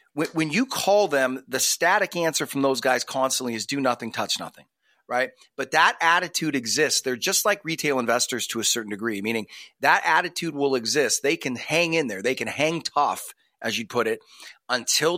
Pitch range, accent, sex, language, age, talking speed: 130-165 Hz, American, male, English, 30-49, 195 wpm